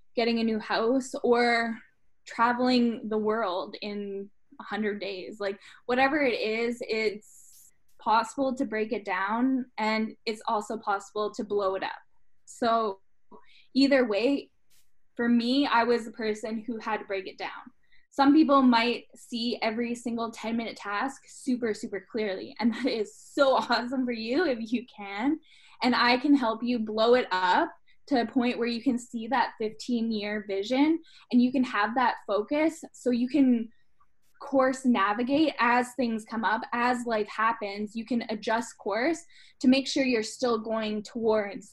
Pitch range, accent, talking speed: 215-255 Hz, American, 165 wpm